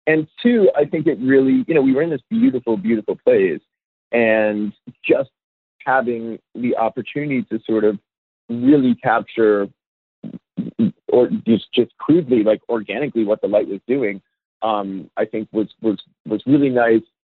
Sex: male